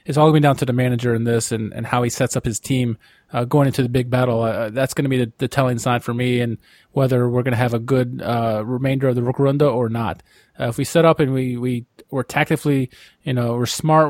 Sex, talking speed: male, 270 wpm